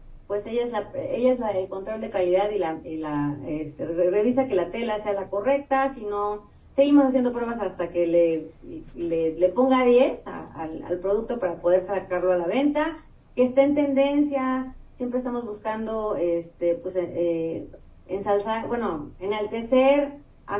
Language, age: Spanish, 30-49